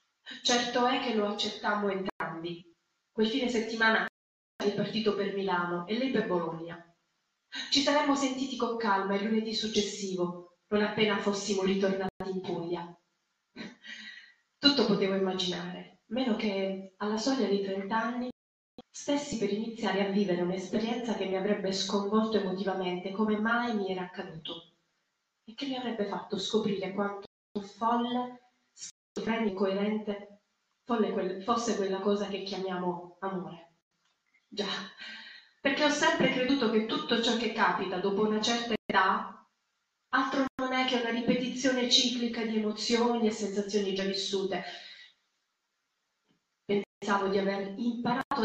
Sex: female